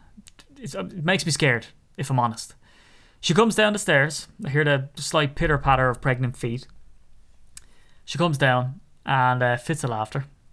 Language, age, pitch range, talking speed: English, 20-39, 125-190 Hz, 160 wpm